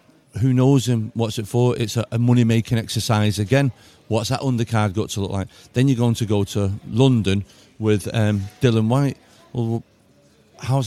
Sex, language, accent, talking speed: male, English, British, 175 wpm